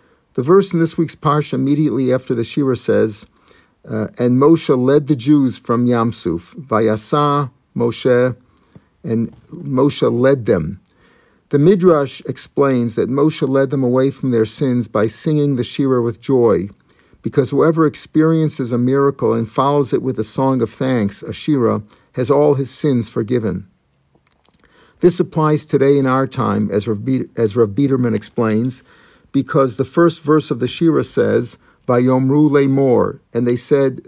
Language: English